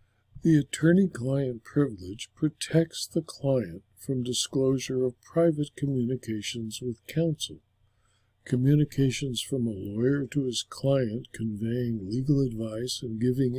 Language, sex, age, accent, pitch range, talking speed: English, male, 60-79, American, 110-150 Hz, 110 wpm